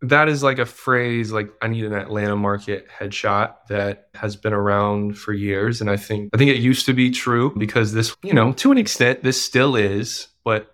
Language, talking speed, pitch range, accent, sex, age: English, 220 wpm, 100-120 Hz, American, male, 20-39